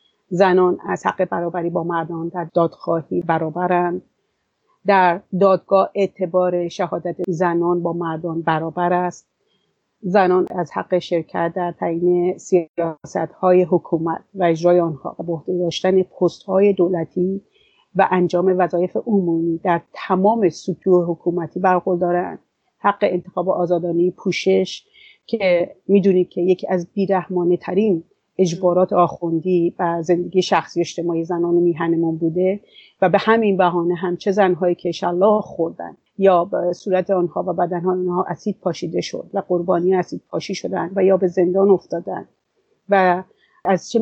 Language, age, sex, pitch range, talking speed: English, 40-59, female, 175-190 Hz, 135 wpm